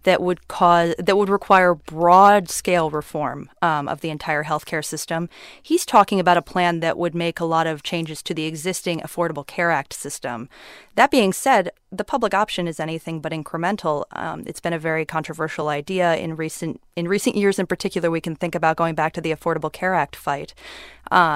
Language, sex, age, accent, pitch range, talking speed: English, female, 30-49, American, 165-195 Hz, 200 wpm